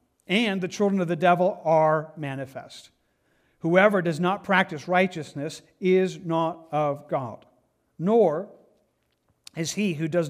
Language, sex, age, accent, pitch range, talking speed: English, male, 50-69, American, 155-195 Hz, 130 wpm